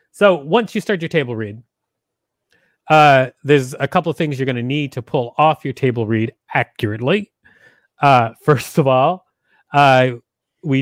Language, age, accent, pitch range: English, 30-49, American, 125-155 Hz